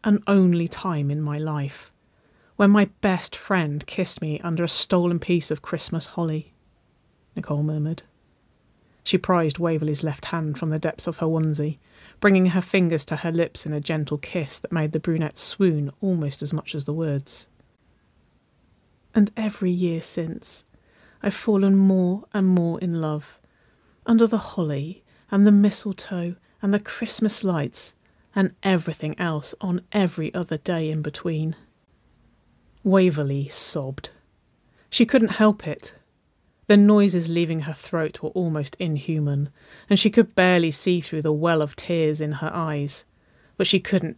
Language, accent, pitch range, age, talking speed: English, British, 150-185 Hz, 30-49, 155 wpm